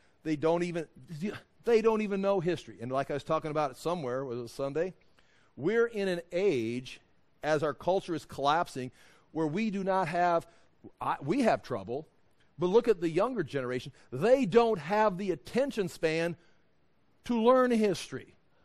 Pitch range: 145-200 Hz